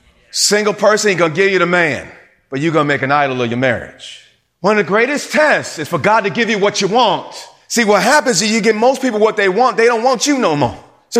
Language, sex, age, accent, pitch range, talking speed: English, male, 30-49, American, 130-175 Hz, 275 wpm